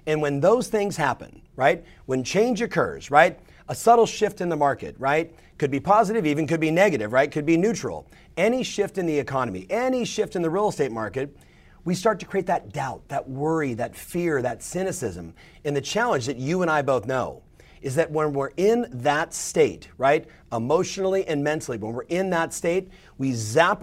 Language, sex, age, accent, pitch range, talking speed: English, male, 40-59, American, 135-195 Hz, 200 wpm